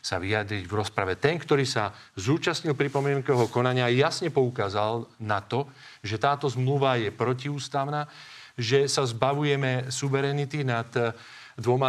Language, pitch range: Slovak, 115-140 Hz